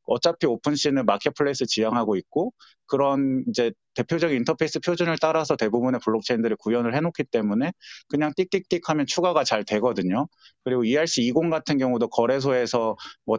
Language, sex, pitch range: Korean, male, 120-160 Hz